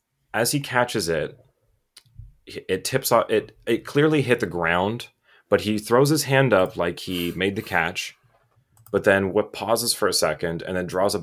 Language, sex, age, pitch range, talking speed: English, male, 30-49, 90-120 Hz, 185 wpm